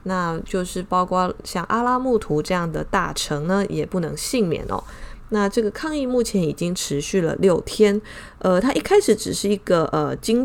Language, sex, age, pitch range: Chinese, female, 20-39, 175-220 Hz